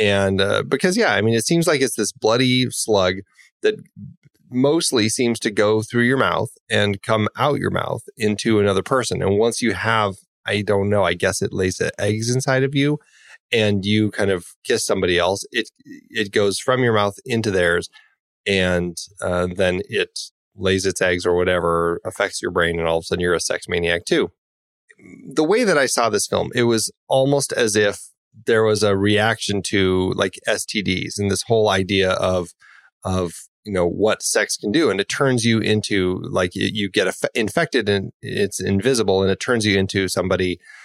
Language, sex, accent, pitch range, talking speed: English, male, American, 95-115 Hz, 195 wpm